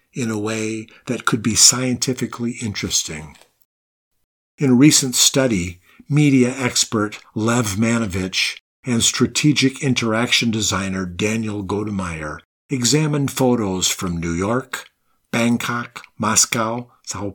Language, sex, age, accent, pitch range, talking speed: English, male, 50-69, American, 100-125 Hz, 105 wpm